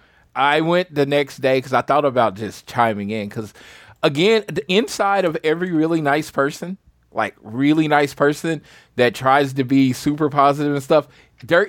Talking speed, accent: 175 wpm, American